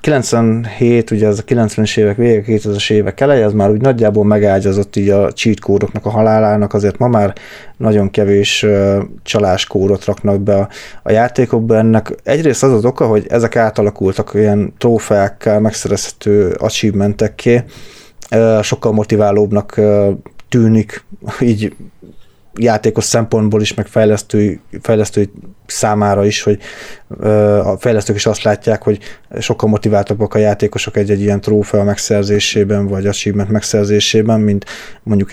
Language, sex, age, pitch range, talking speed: Hungarian, male, 20-39, 100-110 Hz, 125 wpm